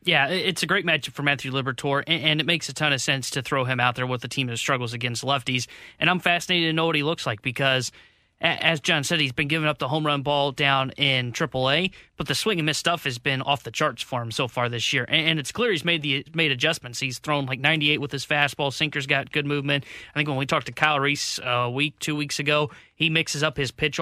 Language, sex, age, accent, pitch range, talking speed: English, male, 20-39, American, 140-165 Hz, 260 wpm